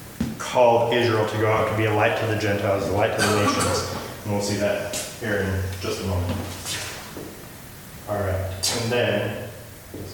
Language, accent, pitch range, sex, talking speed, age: English, American, 100-125 Hz, male, 185 wpm, 30-49